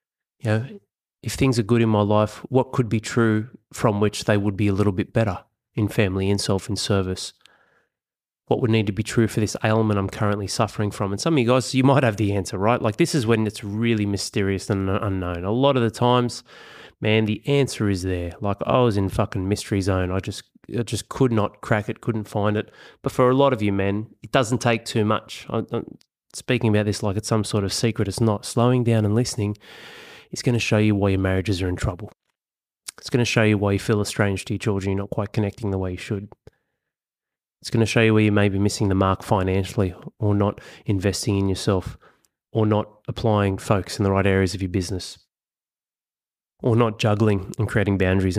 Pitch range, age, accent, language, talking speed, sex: 100-115 Hz, 20-39, Australian, English, 230 wpm, male